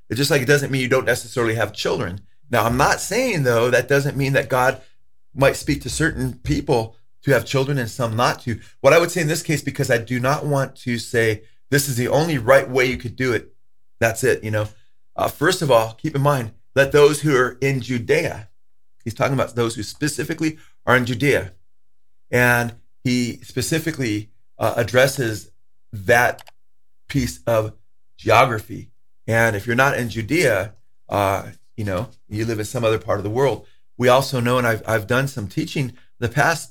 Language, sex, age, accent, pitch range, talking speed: English, male, 30-49, American, 110-135 Hz, 200 wpm